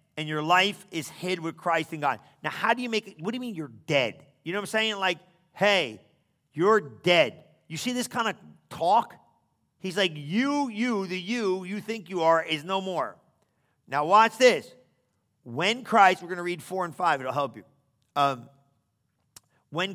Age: 40-59